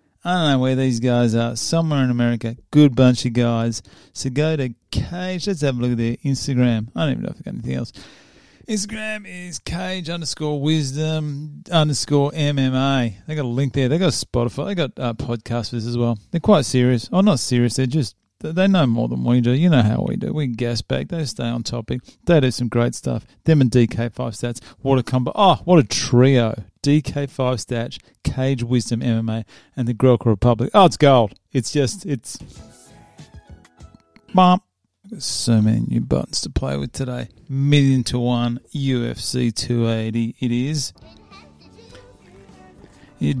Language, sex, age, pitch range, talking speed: English, male, 40-59, 115-150 Hz, 180 wpm